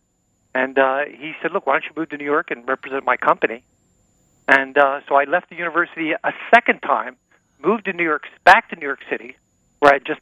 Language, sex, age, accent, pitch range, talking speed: English, male, 50-69, American, 130-160 Hz, 230 wpm